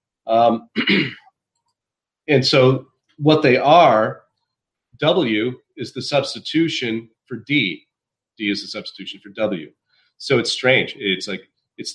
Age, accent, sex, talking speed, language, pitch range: 40-59, American, male, 120 wpm, English, 105-135 Hz